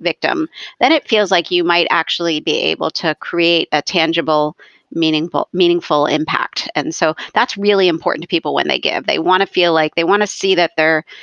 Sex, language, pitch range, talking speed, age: female, English, 165-205 Hz, 205 wpm, 40-59